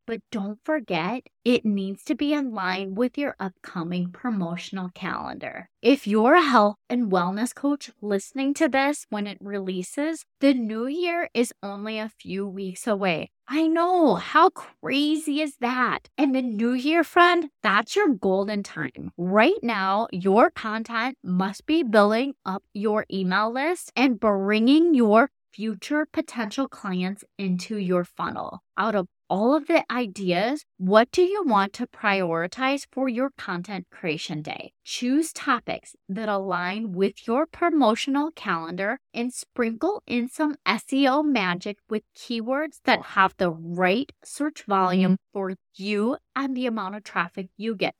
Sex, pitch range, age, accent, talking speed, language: female, 195-275 Hz, 20-39, American, 150 wpm, English